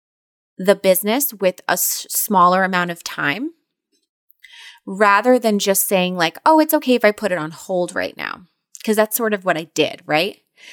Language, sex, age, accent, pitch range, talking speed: English, female, 30-49, American, 175-215 Hz, 180 wpm